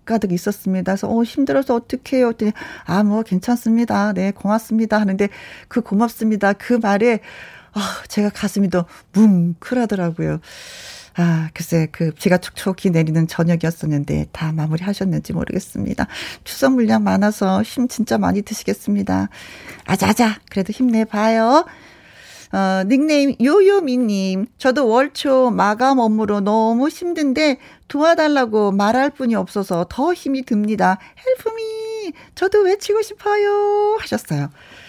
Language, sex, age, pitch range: Korean, female, 40-59, 185-250 Hz